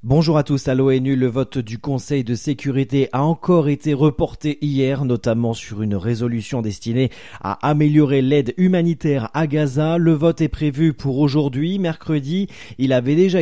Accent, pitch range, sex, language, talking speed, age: French, 125-160 Hz, male, French, 165 wpm, 30-49